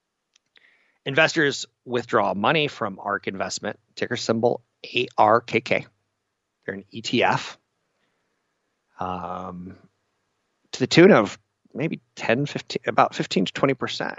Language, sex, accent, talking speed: English, male, American, 95 wpm